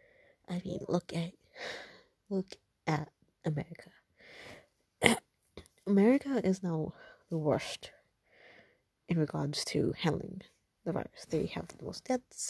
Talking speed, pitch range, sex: 110 wpm, 160-230 Hz, female